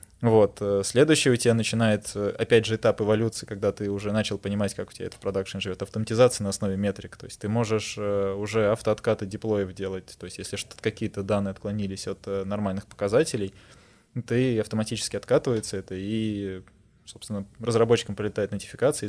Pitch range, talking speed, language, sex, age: 100-110 Hz, 160 wpm, Russian, male, 20-39